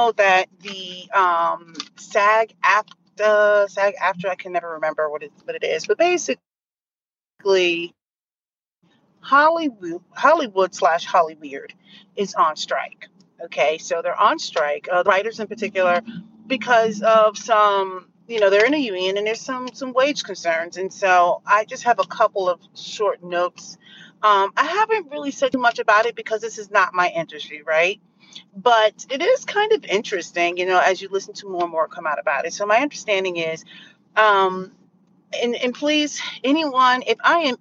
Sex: female